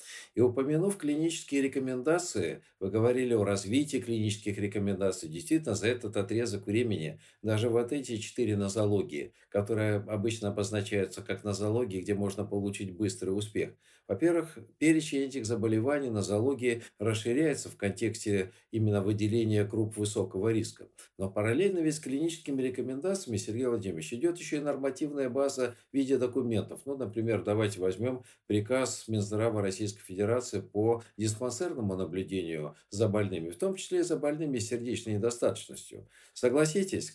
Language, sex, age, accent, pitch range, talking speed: Russian, male, 50-69, native, 105-135 Hz, 130 wpm